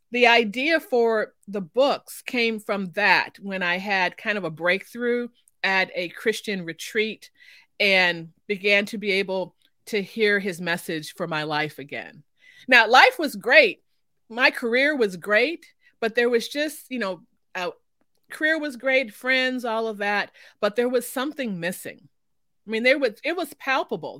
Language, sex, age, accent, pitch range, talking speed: English, female, 30-49, American, 180-240 Hz, 165 wpm